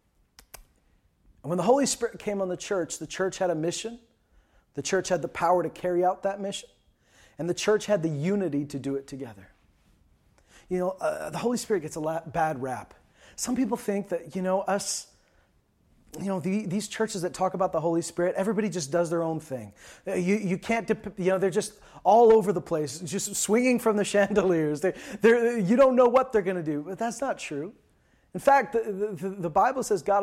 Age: 30-49